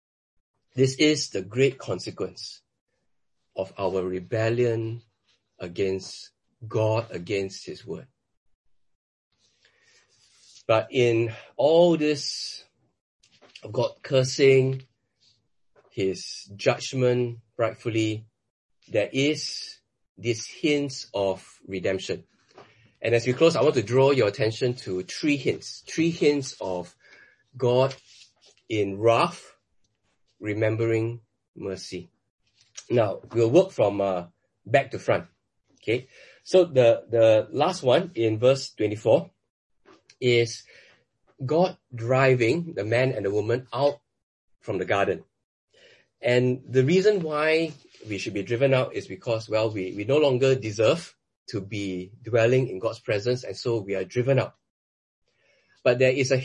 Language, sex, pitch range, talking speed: English, male, 105-135 Hz, 120 wpm